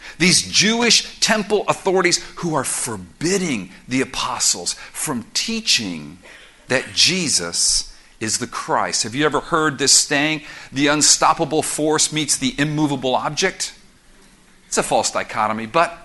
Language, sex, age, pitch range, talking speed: English, male, 50-69, 130-185 Hz, 125 wpm